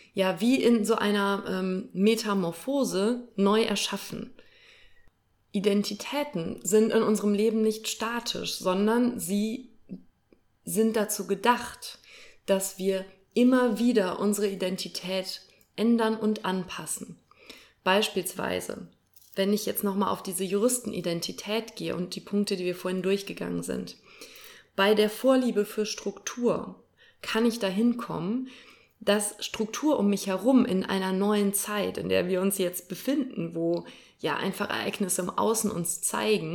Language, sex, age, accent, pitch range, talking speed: German, female, 20-39, German, 185-225 Hz, 130 wpm